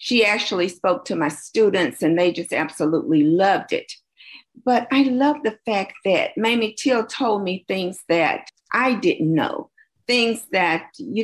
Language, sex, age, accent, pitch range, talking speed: English, female, 50-69, American, 195-285 Hz, 160 wpm